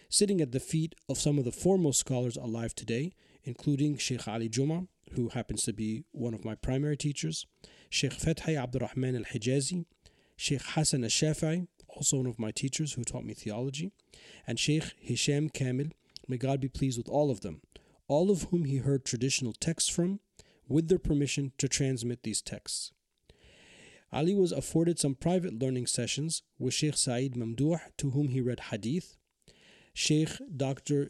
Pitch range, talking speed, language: 125-150 Hz, 170 wpm, English